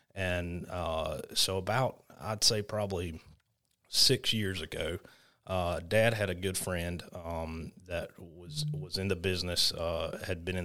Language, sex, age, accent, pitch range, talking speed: English, male, 30-49, American, 85-100 Hz, 150 wpm